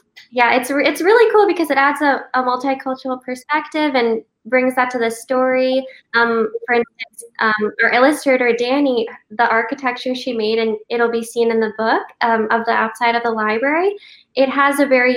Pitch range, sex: 225-255 Hz, female